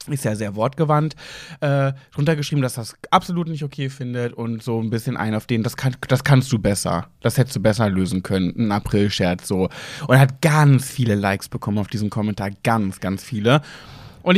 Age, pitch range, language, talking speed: 20-39, 115-170 Hz, German, 200 wpm